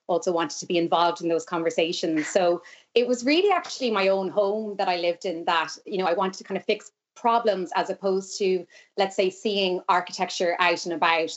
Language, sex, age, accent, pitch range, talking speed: English, female, 30-49, Irish, 170-215 Hz, 210 wpm